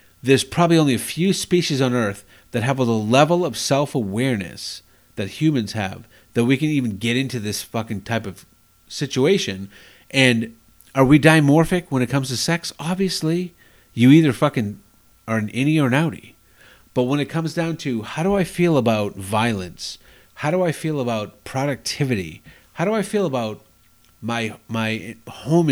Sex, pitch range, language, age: male, 110-165 Hz, English, 40-59